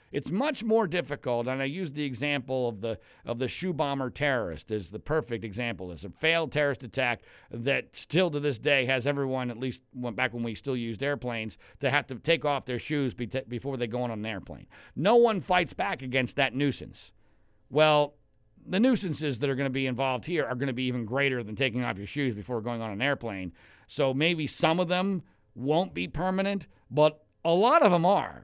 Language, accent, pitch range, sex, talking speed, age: English, American, 130-170 Hz, male, 215 wpm, 50-69